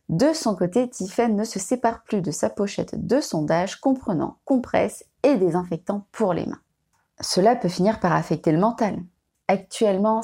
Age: 20-39